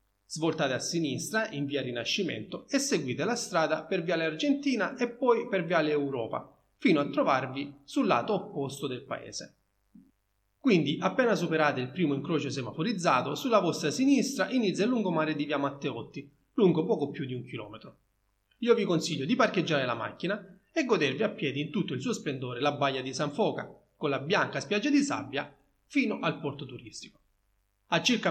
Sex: male